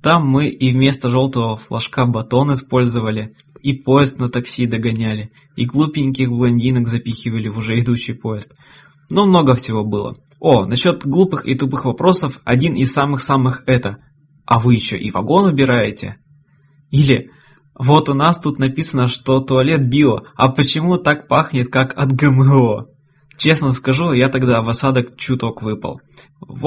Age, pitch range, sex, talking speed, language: 20-39, 120-145 Hz, male, 150 wpm, Russian